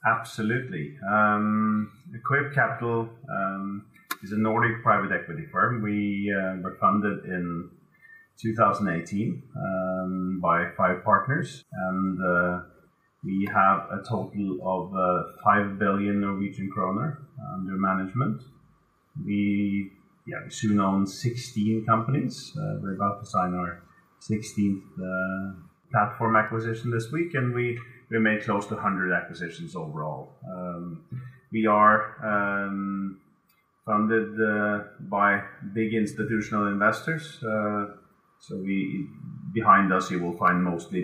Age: 30-49